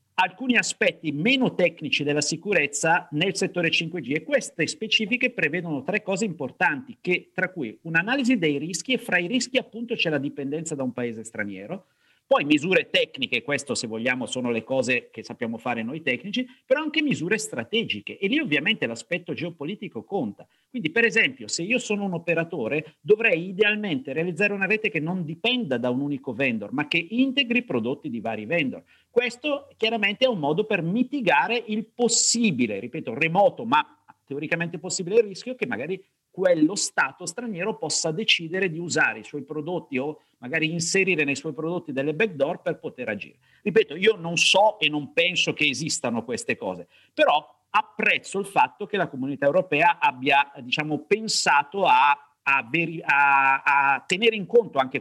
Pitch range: 145-220 Hz